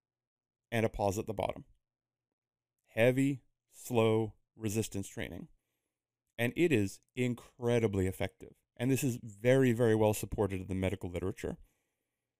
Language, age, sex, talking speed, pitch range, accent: English, 30-49, male, 125 wpm, 100-130 Hz, American